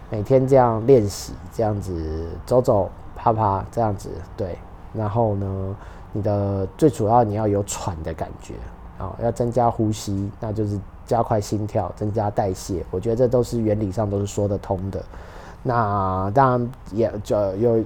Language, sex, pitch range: Chinese, male, 95-120 Hz